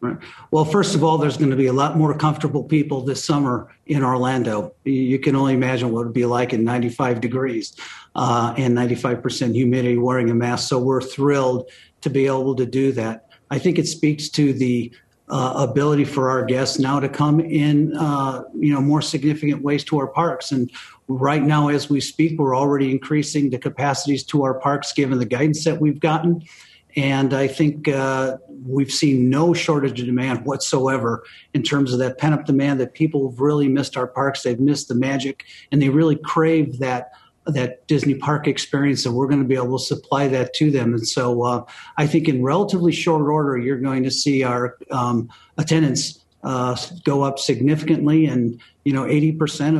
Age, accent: 40-59, American